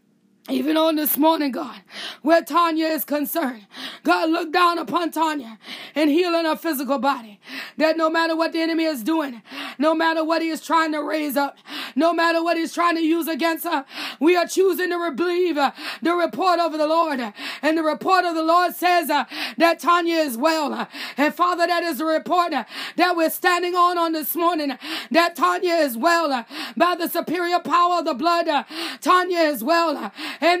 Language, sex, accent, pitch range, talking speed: English, female, American, 310-350 Hz, 185 wpm